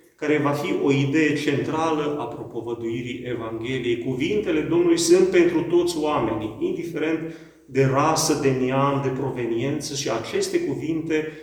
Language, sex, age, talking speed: Romanian, male, 40-59, 130 wpm